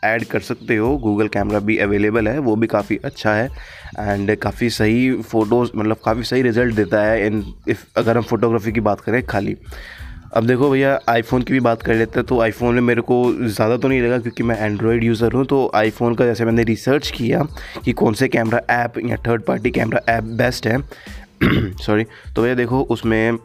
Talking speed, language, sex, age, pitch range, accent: 205 wpm, Hindi, male, 20-39, 110-120 Hz, native